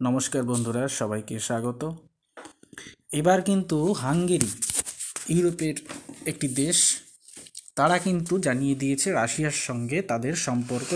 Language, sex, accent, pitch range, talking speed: Bengali, male, native, 130-175 Hz, 90 wpm